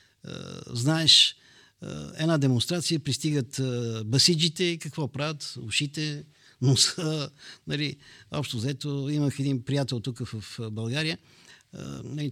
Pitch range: 125-160 Hz